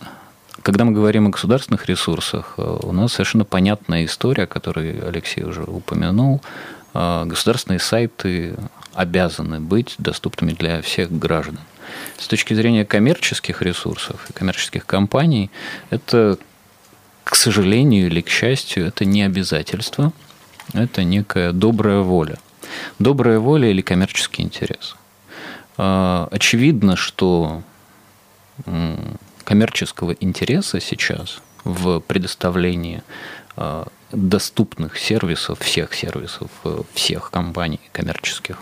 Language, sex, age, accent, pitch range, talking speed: Russian, male, 30-49, native, 85-110 Hz, 100 wpm